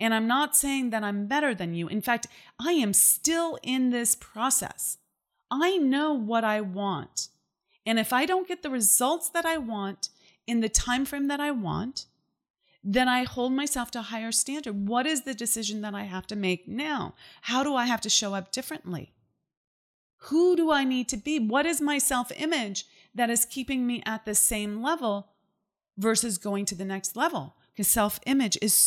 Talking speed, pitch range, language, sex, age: 190 wpm, 205-275 Hz, English, female, 30-49